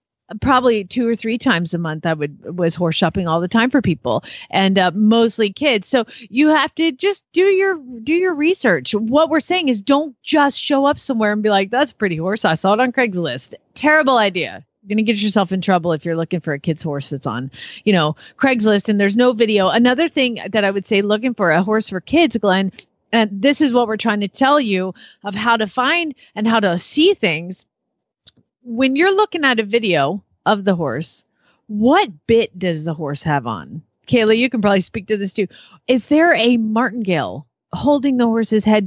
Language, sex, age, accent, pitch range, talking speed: English, female, 40-59, American, 185-255 Hz, 215 wpm